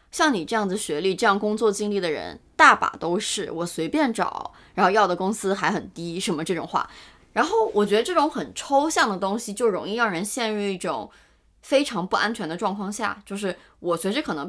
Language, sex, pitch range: Chinese, female, 175-230 Hz